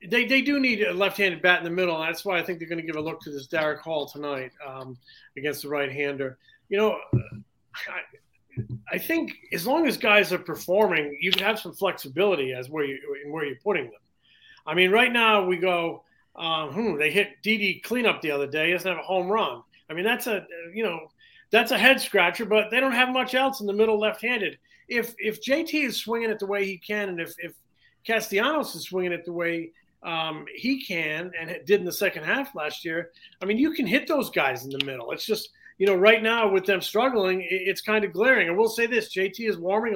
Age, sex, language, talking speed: 40-59, male, English, 235 wpm